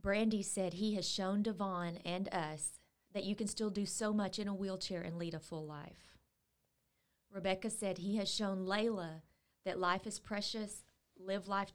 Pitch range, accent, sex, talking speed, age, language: 175-205 Hz, American, female, 180 wpm, 30-49, English